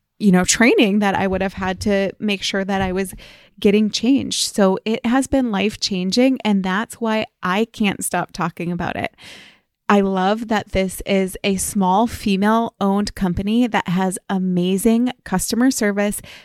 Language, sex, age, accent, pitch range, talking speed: English, female, 20-39, American, 195-230 Hz, 170 wpm